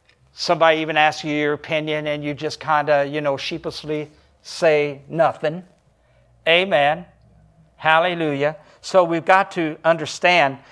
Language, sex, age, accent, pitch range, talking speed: English, male, 60-79, American, 140-180 Hz, 130 wpm